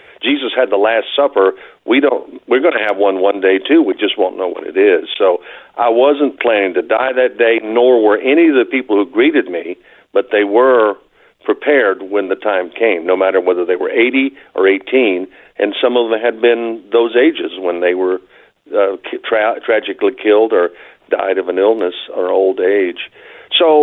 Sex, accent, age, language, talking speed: male, American, 50-69, English, 200 wpm